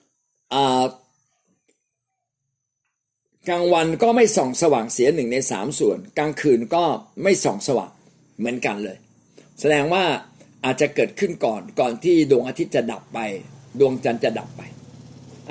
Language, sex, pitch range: Thai, male, 125-195 Hz